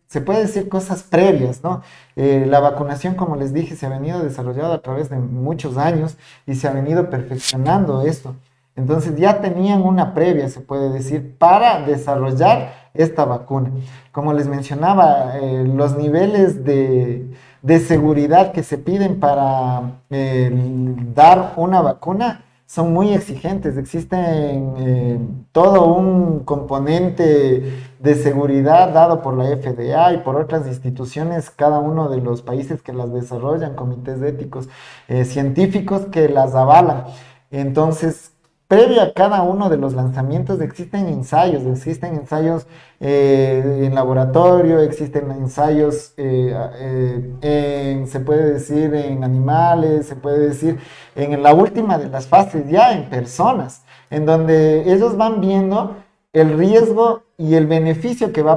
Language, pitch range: Spanish, 135-170 Hz